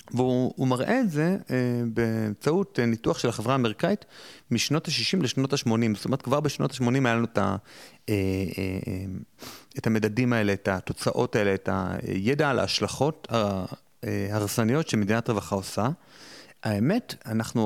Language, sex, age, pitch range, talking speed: Hebrew, male, 30-49, 100-130 Hz, 120 wpm